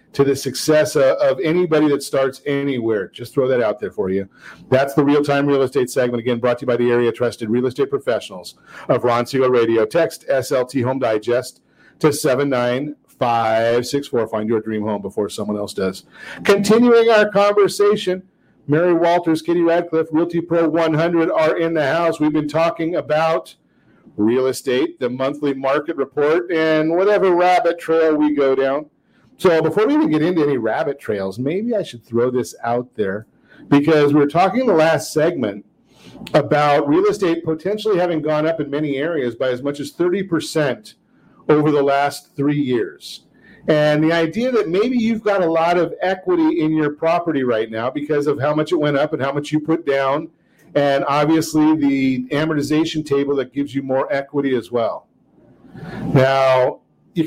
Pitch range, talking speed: 135-165 Hz, 180 wpm